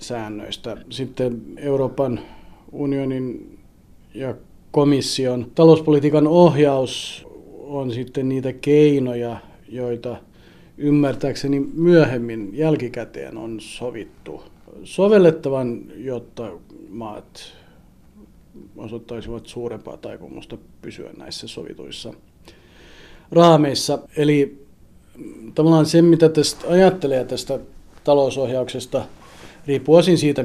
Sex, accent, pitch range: male, native, 120-150 Hz